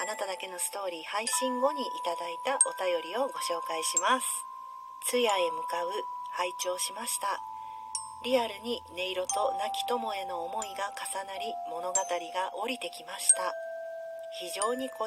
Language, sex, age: Japanese, female, 40-59